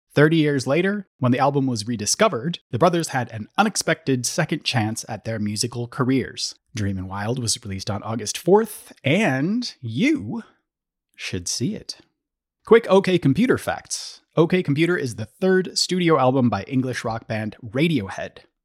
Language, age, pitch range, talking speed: English, 30-49, 110-155 Hz, 150 wpm